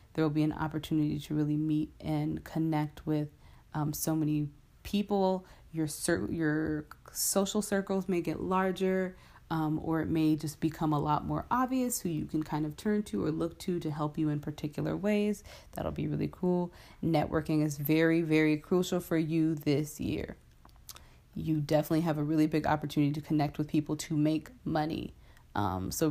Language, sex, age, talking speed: English, female, 20-39, 180 wpm